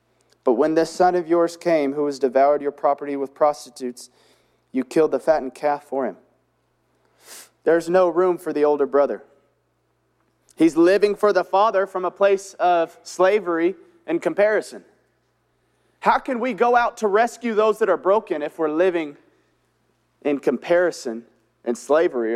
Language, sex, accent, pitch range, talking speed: English, male, American, 145-225 Hz, 155 wpm